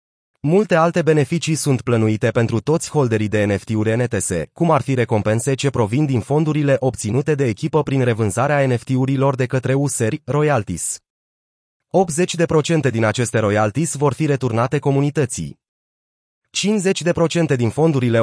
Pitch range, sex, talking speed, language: 115-145 Hz, male, 130 wpm, Romanian